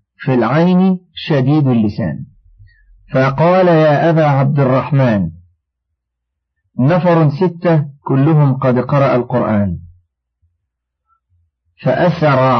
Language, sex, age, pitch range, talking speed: Arabic, male, 50-69, 110-160 Hz, 75 wpm